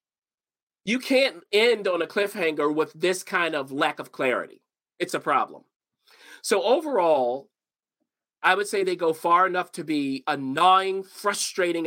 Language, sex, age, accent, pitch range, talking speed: English, male, 40-59, American, 135-175 Hz, 150 wpm